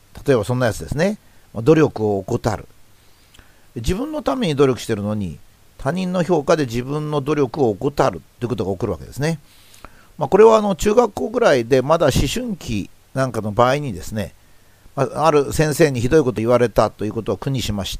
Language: Japanese